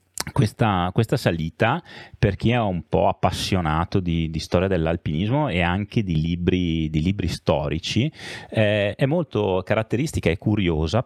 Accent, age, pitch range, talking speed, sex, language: native, 30-49, 85-115 Hz, 135 wpm, male, Italian